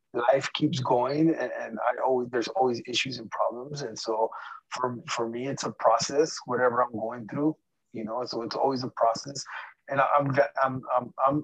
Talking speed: 185 wpm